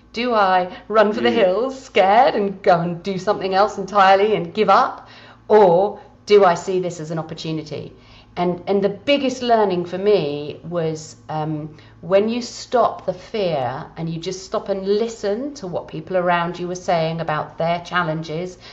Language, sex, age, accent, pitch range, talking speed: English, female, 40-59, British, 155-195 Hz, 175 wpm